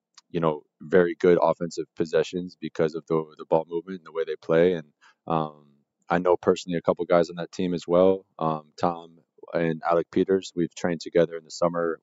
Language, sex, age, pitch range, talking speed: Greek, male, 20-39, 80-90 Hz, 205 wpm